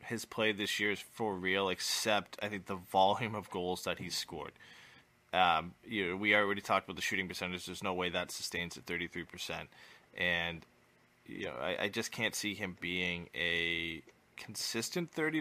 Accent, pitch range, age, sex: American, 90-105 Hz, 20-39, male